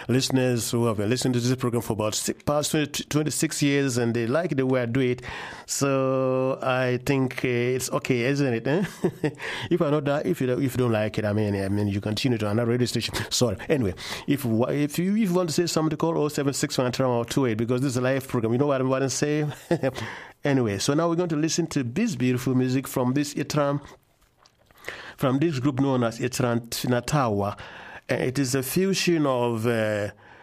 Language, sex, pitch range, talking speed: German, male, 115-145 Hz, 225 wpm